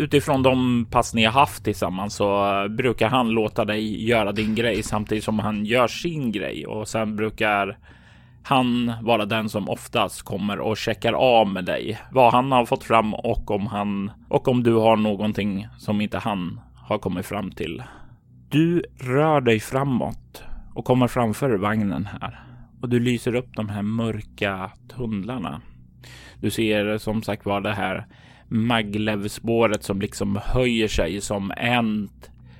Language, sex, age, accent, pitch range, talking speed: Swedish, male, 20-39, native, 100-115 Hz, 160 wpm